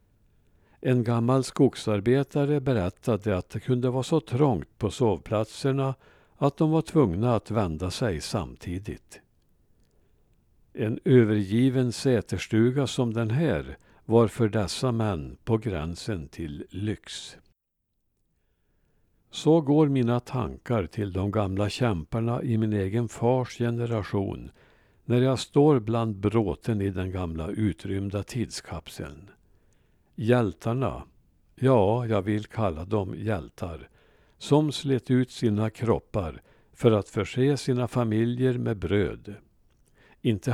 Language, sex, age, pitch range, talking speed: Swedish, male, 60-79, 100-125 Hz, 115 wpm